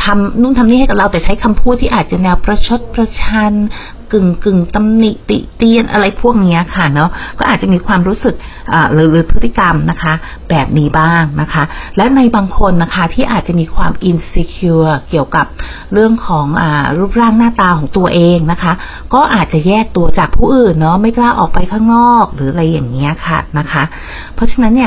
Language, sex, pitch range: Thai, female, 165-210 Hz